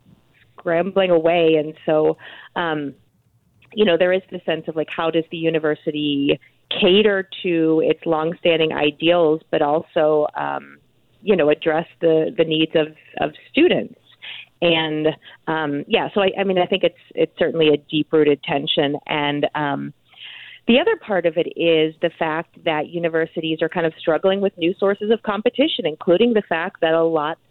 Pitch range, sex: 155-175 Hz, female